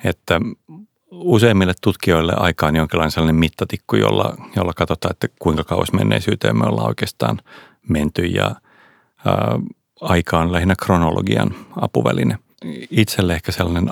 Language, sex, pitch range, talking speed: Finnish, male, 85-110 Hz, 125 wpm